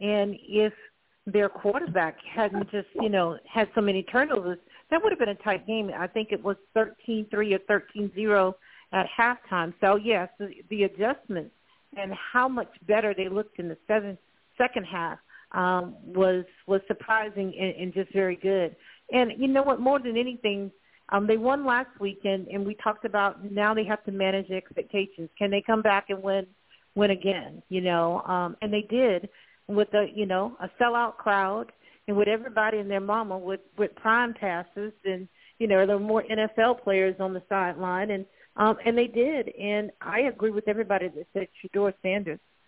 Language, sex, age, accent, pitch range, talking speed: English, female, 50-69, American, 190-220 Hz, 185 wpm